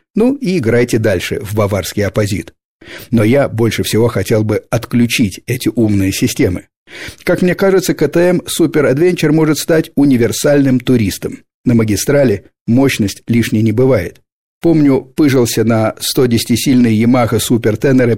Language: Russian